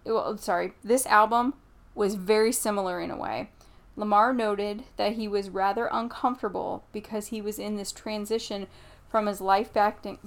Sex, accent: female, American